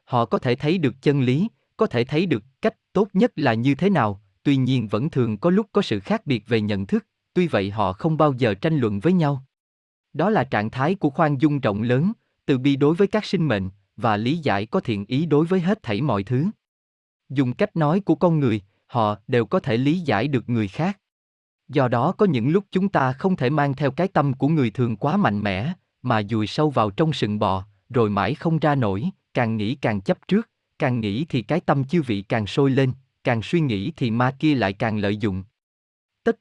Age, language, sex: 20-39, Vietnamese, male